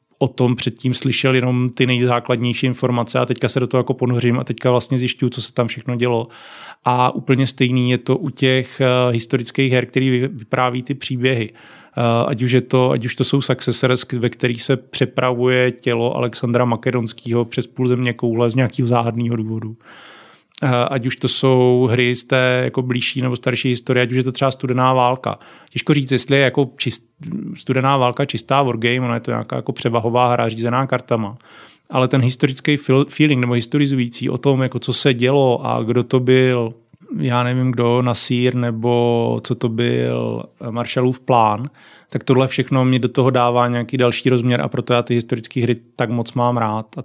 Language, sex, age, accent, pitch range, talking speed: Czech, male, 30-49, native, 120-135 Hz, 185 wpm